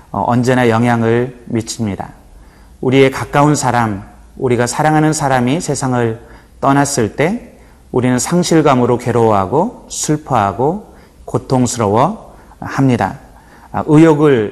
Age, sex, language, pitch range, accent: 30-49, male, Korean, 110-135 Hz, native